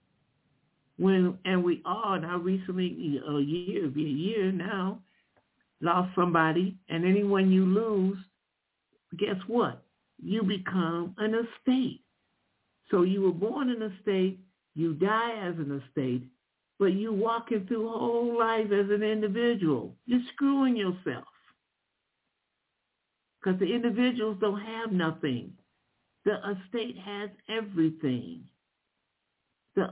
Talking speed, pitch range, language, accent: 120 wpm, 160-205 Hz, English, American